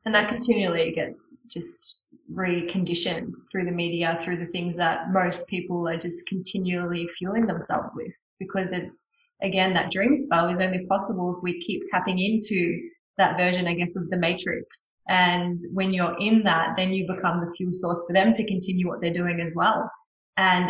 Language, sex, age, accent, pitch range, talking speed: English, female, 20-39, Australian, 175-195 Hz, 185 wpm